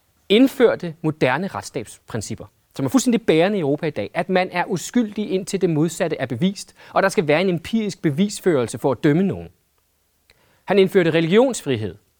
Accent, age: native, 30-49